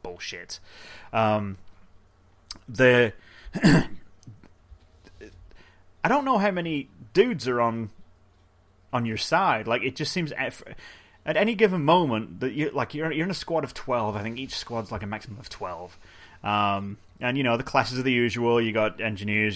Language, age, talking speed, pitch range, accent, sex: English, 30-49, 165 wpm, 100-125 Hz, British, male